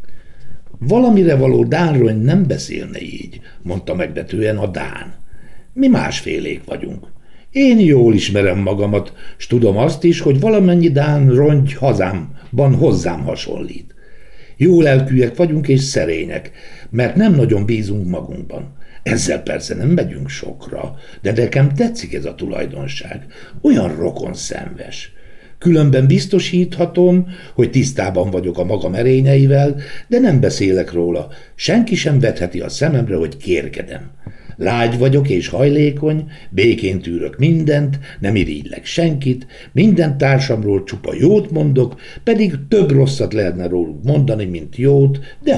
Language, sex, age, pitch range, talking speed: Hungarian, male, 60-79, 105-155 Hz, 125 wpm